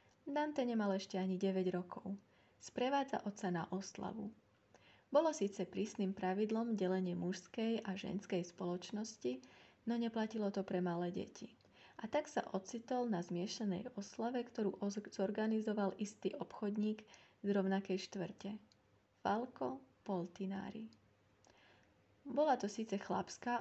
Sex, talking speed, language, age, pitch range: female, 115 wpm, Slovak, 30-49, 190-225 Hz